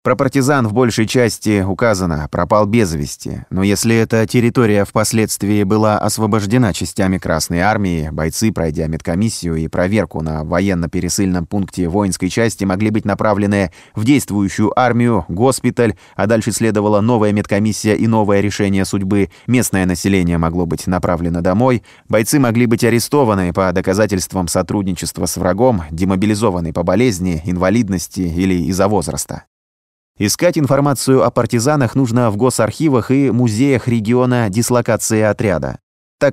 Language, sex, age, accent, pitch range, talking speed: Russian, male, 20-39, native, 90-115 Hz, 130 wpm